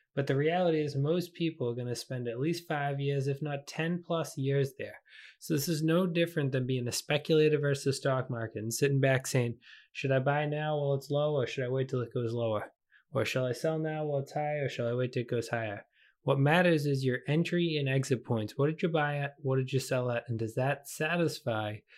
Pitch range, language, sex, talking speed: 130-155 Hz, English, male, 245 wpm